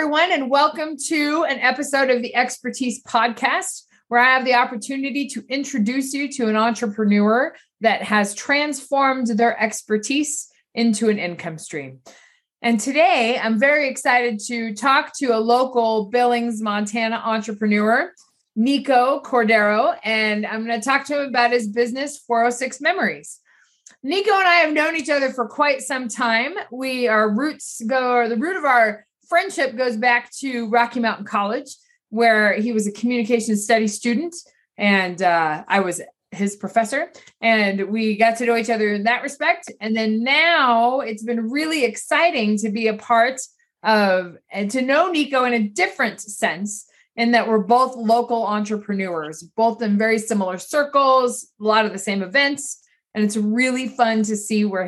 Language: English